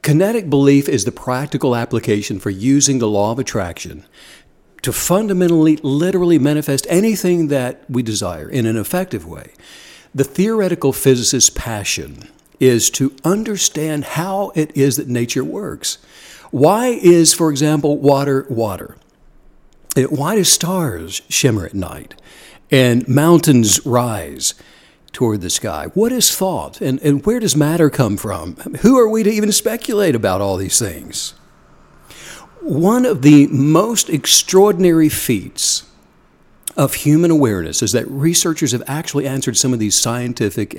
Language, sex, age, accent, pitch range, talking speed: English, male, 60-79, American, 125-170 Hz, 140 wpm